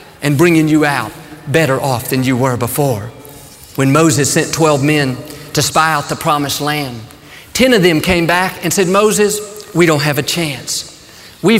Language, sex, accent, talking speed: English, male, American, 180 wpm